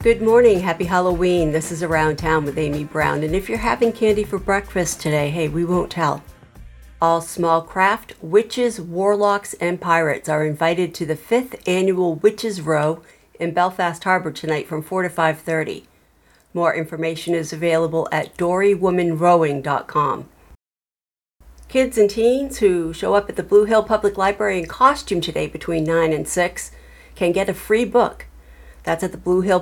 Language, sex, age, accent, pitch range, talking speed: English, female, 50-69, American, 160-195 Hz, 165 wpm